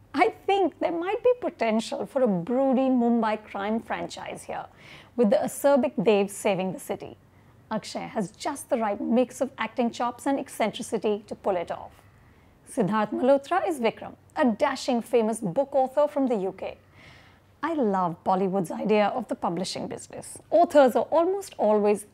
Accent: Indian